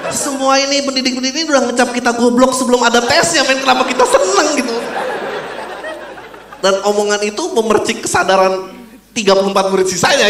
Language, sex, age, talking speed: Indonesian, male, 30-49, 145 wpm